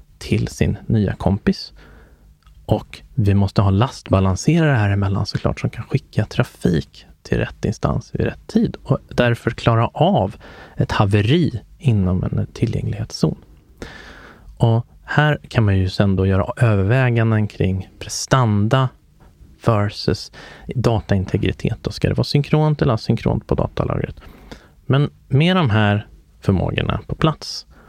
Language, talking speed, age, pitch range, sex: Swedish, 130 wpm, 30-49, 100-130 Hz, male